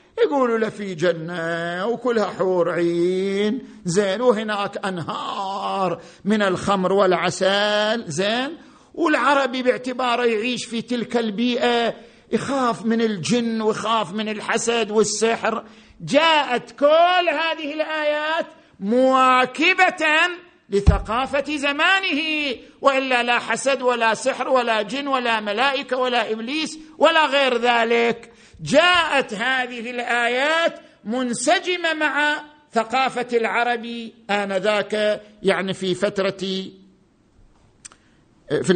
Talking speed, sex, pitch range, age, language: 90 wpm, male, 190-260 Hz, 50-69, Arabic